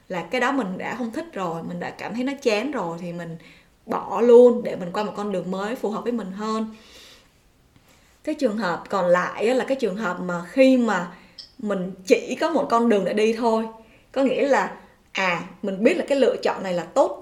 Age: 20-39